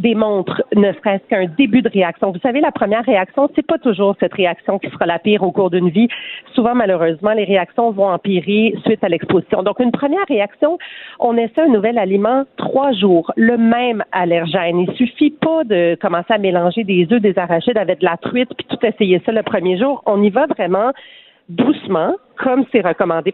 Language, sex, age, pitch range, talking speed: French, female, 40-59, 185-245 Hz, 205 wpm